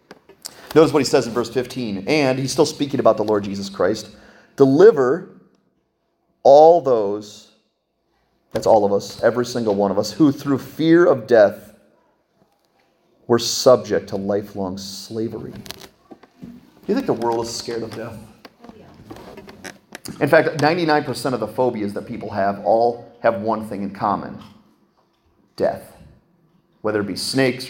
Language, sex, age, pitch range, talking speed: English, male, 30-49, 115-155 Hz, 145 wpm